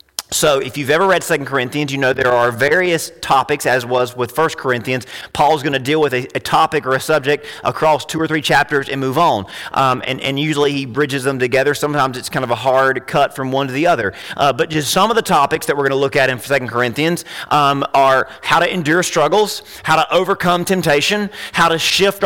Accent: American